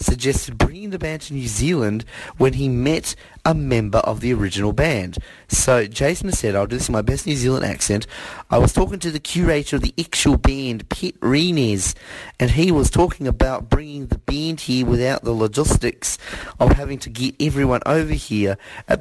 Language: English